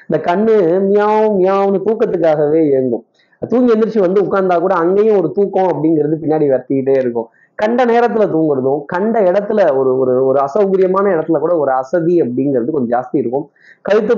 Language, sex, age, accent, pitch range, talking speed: Tamil, male, 20-39, native, 145-190 Hz, 150 wpm